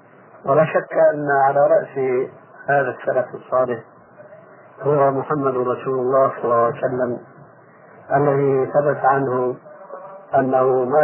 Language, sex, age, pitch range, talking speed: Arabic, male, 50-69, 120-145 Hz, 115 wpm